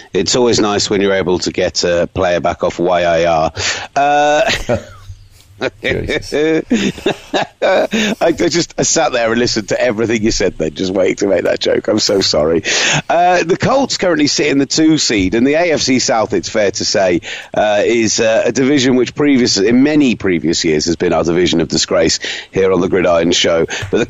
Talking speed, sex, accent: 185 wpm, male, British